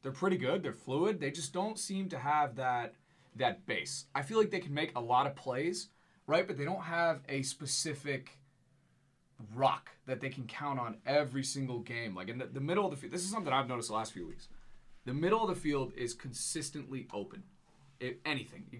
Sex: male